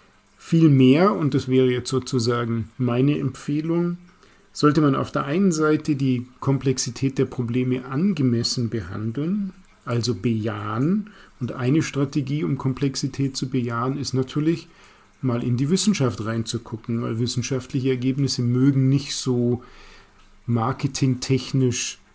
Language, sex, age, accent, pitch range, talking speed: German, male, 40-59, German, 120-140 Hz, 120 wpm